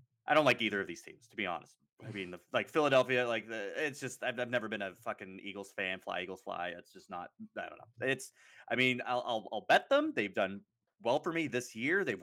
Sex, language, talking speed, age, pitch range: male, English, 255 wpm, 30-49, 100-130 Hz